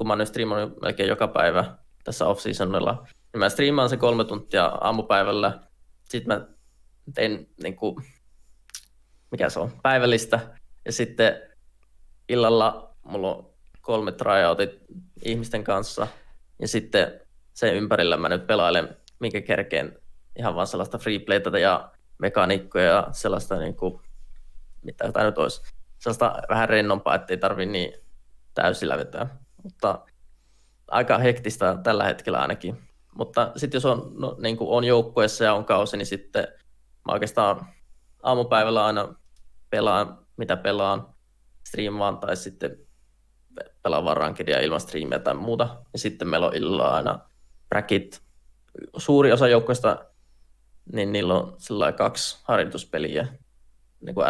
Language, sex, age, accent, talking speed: Finnish, male, 20-39, native, 130 wpm